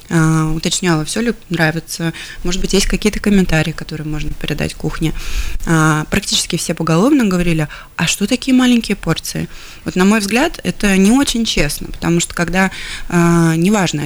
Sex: female